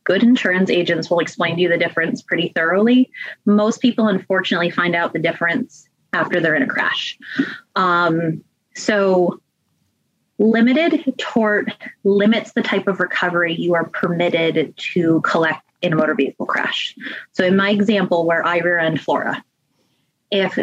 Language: English